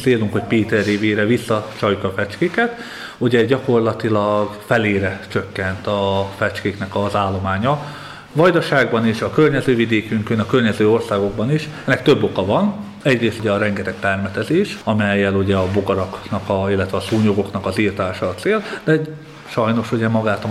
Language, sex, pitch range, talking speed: Hungarian, male, 100-120 Hz, 145 wpm